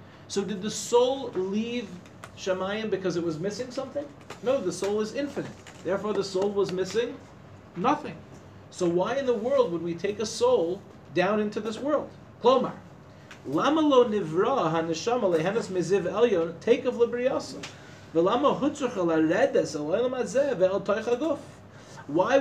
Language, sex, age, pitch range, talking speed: English, male, 40-59, 170-235 Hz, 100 wpm